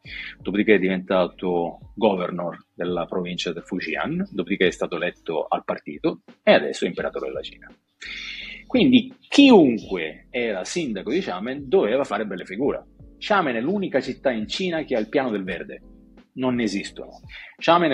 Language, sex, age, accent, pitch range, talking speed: Italian, male, 40-59, native, 95-130 Hz, 155 wpm